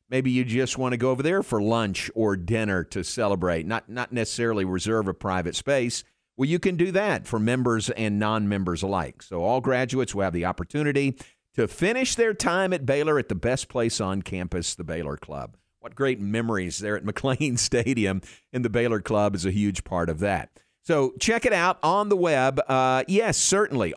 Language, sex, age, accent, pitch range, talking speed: English, male, 50-69, American, 95-130 Hz, 200 wpm